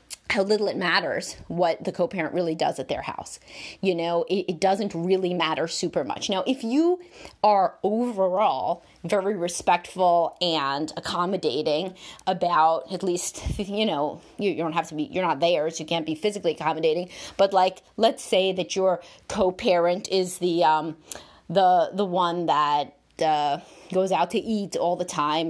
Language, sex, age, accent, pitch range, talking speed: English, female, 30-49, American, 180-230 Hz, 165 wpm